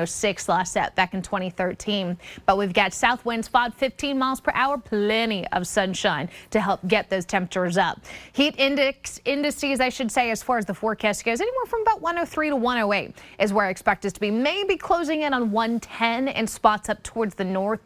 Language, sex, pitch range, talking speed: English, female, 195-240 Hz, 205 wpm